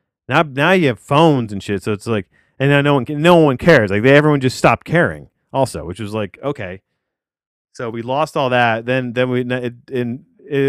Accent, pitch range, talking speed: American, 115-145 Hz, 215 wpm